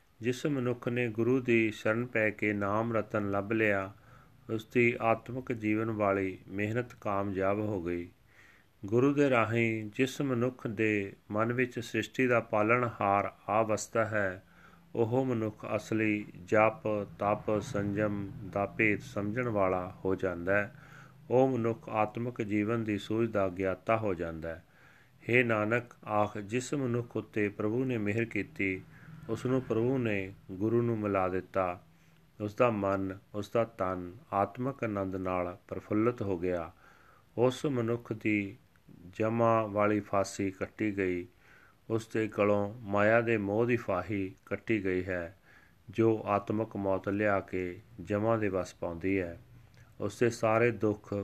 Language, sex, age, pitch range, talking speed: Punjabi, male, 40-59, 100-120 Hz, 140 wpm